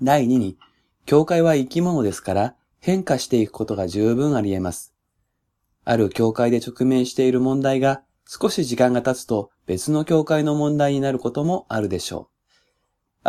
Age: 20-39